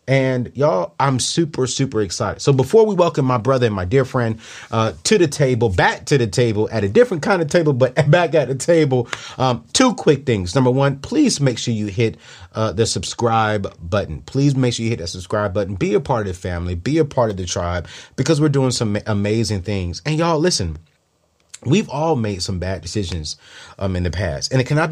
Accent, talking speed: American, 220 wpm